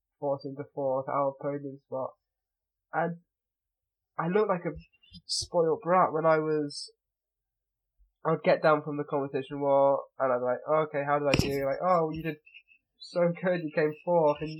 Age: 20-39